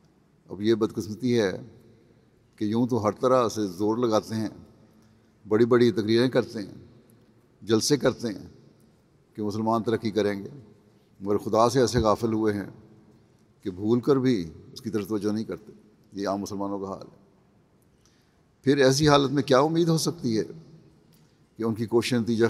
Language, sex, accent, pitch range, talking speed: English, male, Indian, 110-135 Hz, 170 wpm